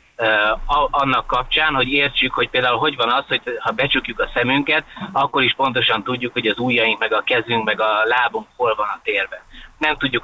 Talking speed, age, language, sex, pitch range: 195 wpm, 20-39, Hungarian, male, 110-150 Hz